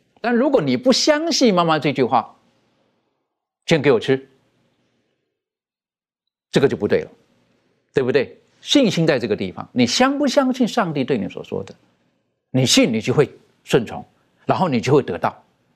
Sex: male